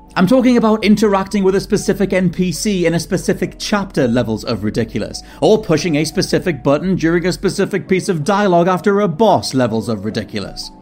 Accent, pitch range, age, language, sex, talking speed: British, 145-200 Hz, 30-49, English, male, 175 wpm